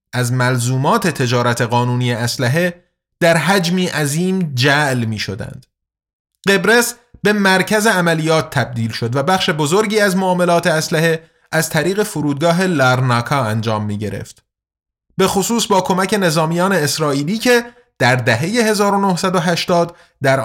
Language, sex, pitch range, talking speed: Persian, male, 135-190 Hz, 120 wpm